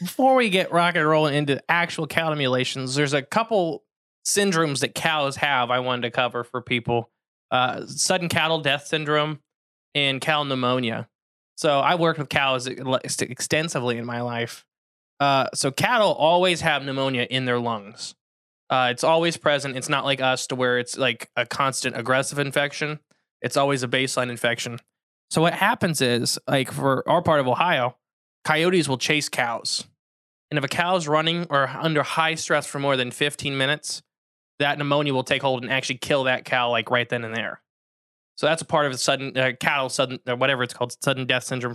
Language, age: English, 20-39